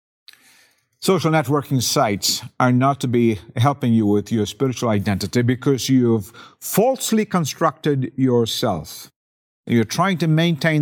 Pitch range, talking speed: 110-145 Hz, 120 wpm